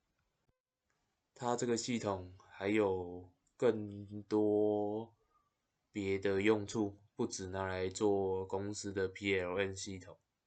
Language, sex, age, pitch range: Chinese, male, 20-39, 100-115 Hz